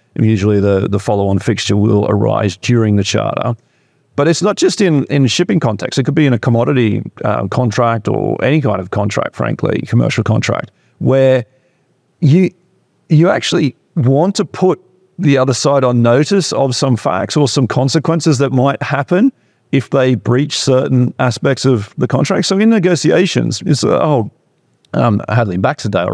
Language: English